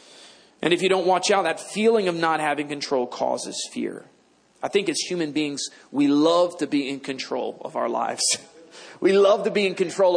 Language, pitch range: English, 150-220 Hz